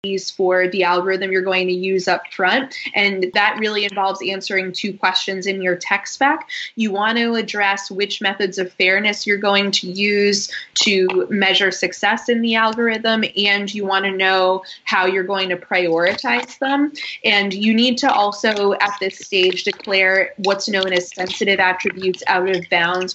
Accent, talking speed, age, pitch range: American, 170 wpm, 20-39, 185-220 Hz